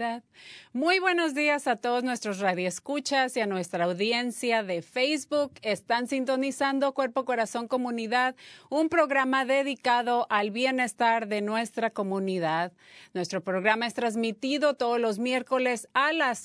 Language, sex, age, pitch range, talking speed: Spanish, female, 30-49, 205-265 Hz, 130 wpm